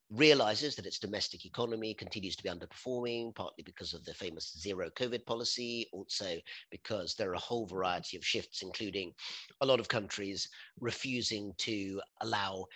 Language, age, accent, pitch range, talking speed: English, 40-59, British, 95-125 Hz, 160 wpm